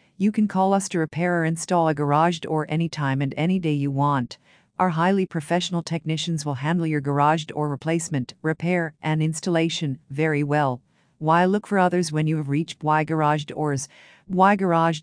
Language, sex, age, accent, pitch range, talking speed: English, female, 50-69, American, 150-175 Hz, 180 wpm